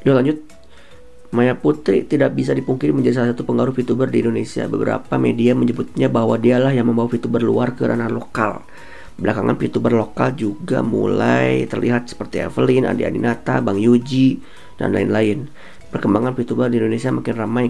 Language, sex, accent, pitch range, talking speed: Indonesian, male, native, 95-125 Hz, 155 wpm